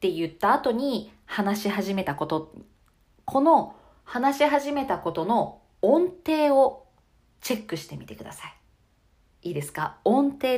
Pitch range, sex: 180-275 Hz, female